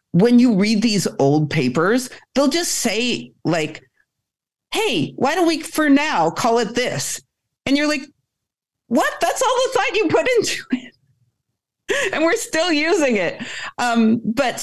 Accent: American